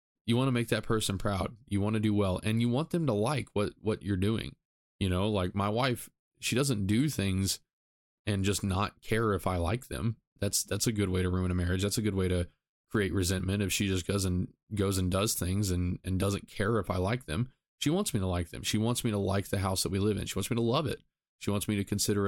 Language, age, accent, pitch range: English, 20-39, American, 95-115 Hz